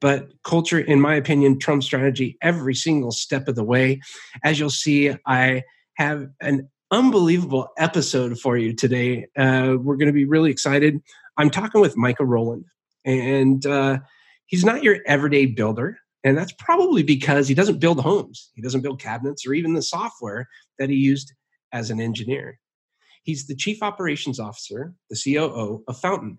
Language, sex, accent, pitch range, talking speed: English, male, American, 130-160 Hz, 170 wpm